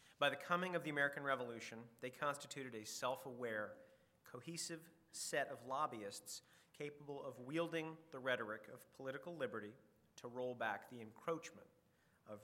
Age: 40-59